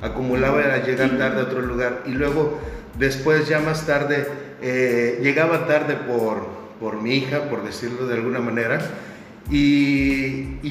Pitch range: 115-150 Hz